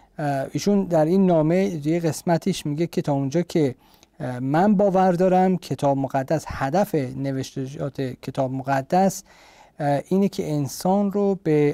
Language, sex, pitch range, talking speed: Persian, male, 135-165 Hz, 130 wpm